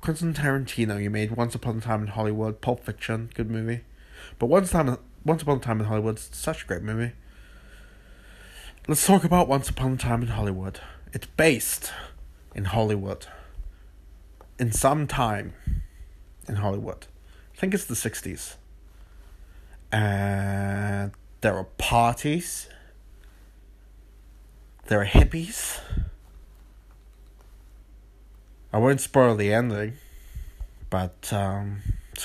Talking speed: 125 wpm